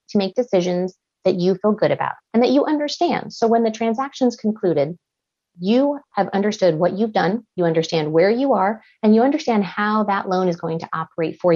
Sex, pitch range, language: female, 180-240 Hz, English